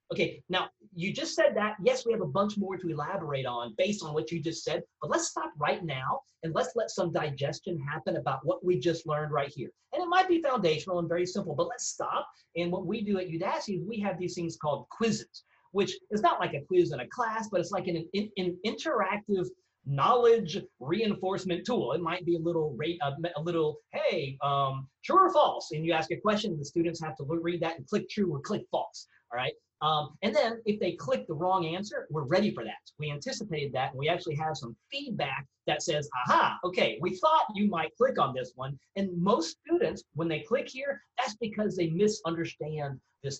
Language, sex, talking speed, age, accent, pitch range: English, male, 225 wpm, 30-49, American, 155-205 Hz